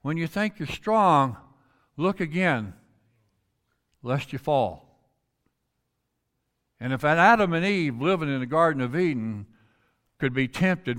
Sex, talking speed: male, 130 wpm